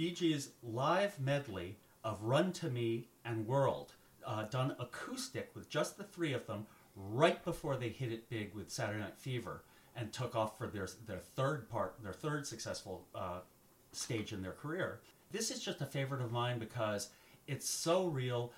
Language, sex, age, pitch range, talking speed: English, male, 40-59, 115-155 Hz, 180 wpm